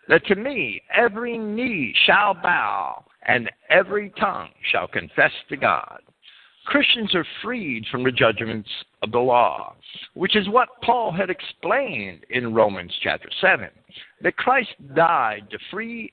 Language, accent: English, American